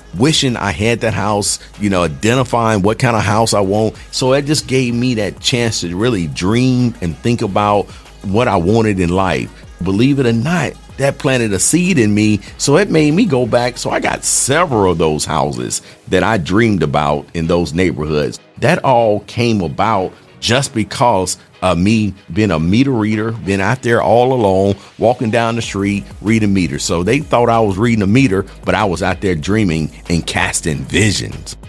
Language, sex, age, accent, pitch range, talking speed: English, male, 50-69, American, 90-115 Hz, 195 wpm